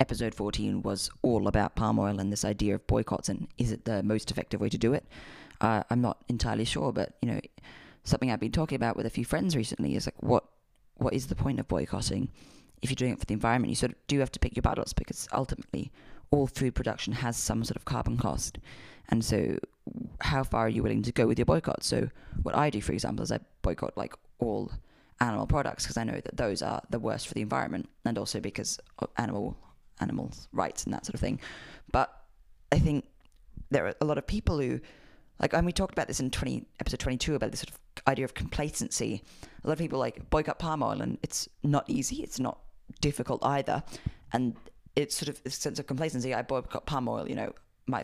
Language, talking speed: English, 225 wpm